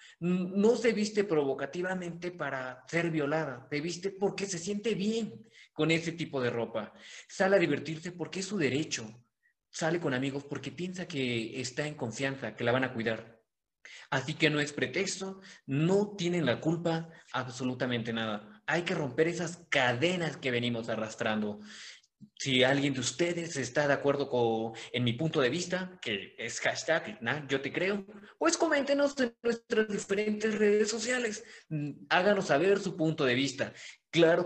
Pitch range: 130-195 Hz